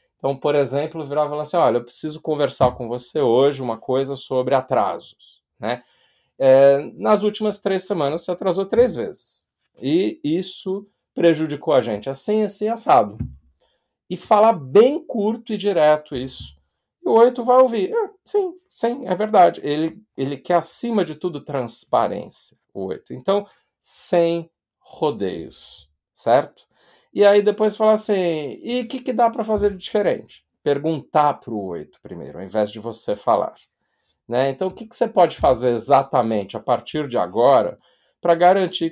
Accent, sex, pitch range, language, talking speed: Brazilian, male, 135-210 Hz, Portuguese, 160 wpm